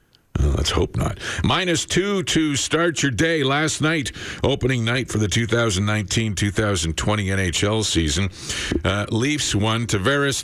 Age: 50-69